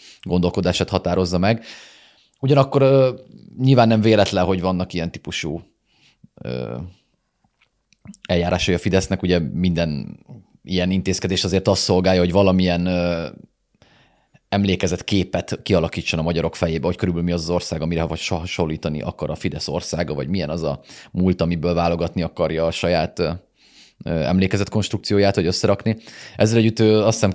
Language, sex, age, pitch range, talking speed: Hungarian, male, 30-49, 85-100 Hz, 145 wpm